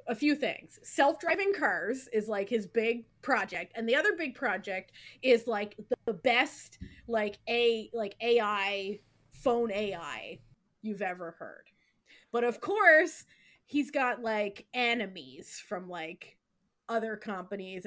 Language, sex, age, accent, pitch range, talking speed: English, female, 20-39, American, 210-270 Hz, 130 wpm